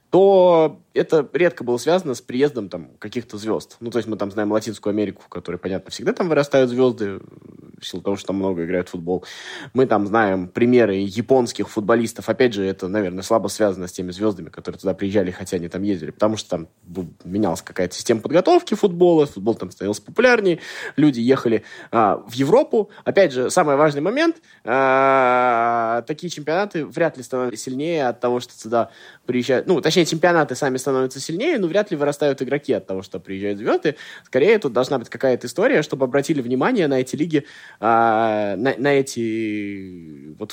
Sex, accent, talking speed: male, native, 180 wpm